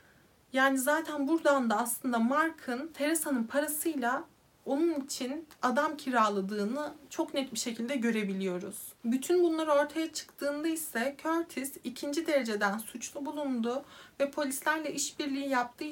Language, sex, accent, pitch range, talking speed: Turkish, female, native, 235-285 Hz, 115 wpm